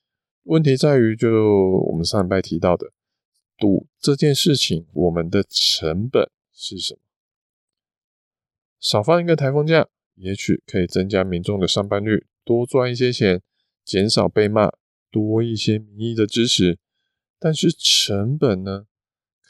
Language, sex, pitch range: Chinese, male, 95-130 Hz